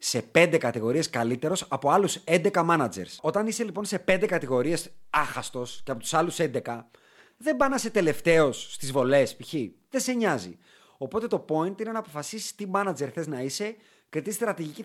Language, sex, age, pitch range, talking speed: Greek, male, 30-49, 135-190 Hz, 180 wpm